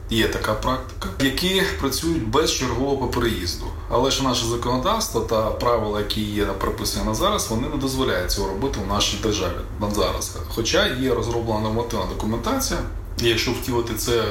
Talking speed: 165 wpm